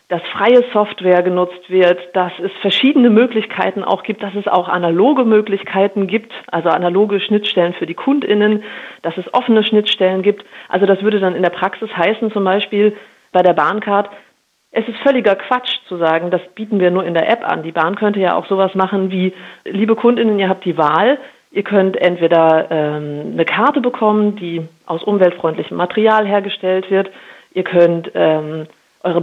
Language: German